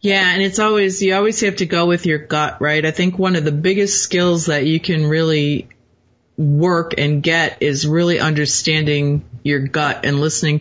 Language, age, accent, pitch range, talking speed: English, 30-49, American, 145-175 Hz, 190 wpm